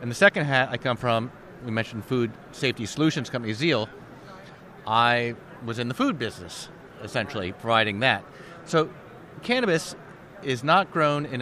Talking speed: 150 wpm